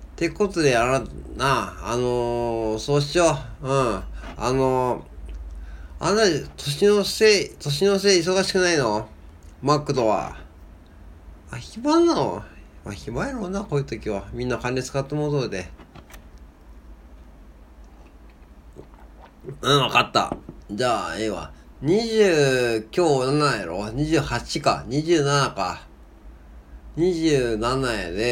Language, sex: Japanese, male